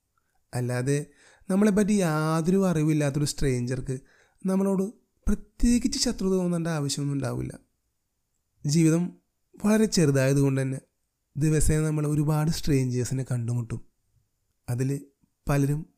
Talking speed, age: 85 wpm, 30-49